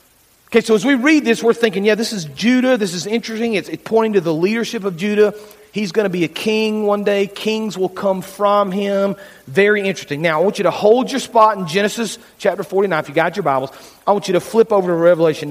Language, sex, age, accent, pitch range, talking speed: English, male, 40-59, American, 175-220 Hz, 245 wpm